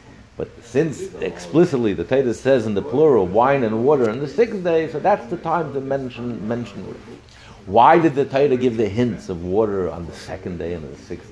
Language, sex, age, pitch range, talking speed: English, male, 60-79, 105-135 Hz, 210 wpm